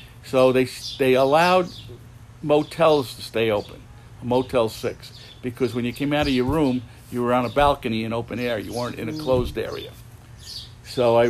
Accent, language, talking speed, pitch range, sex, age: American, English, 180 wpm, 115-135 Hz, male, 60-79